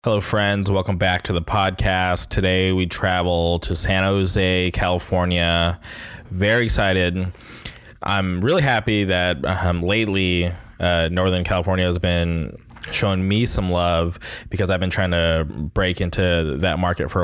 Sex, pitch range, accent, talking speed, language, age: male, 90-105 Hz, American, 145 wpm, English, 20-39